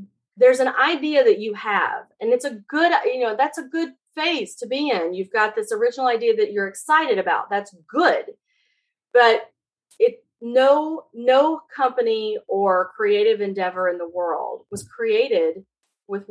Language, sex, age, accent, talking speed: English, female, 30-49, American, 160 wpm